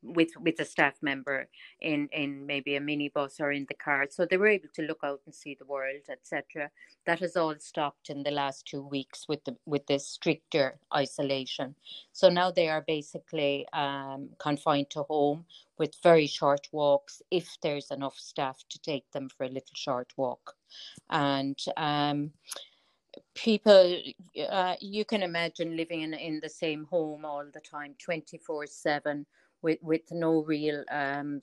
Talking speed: 170 wpm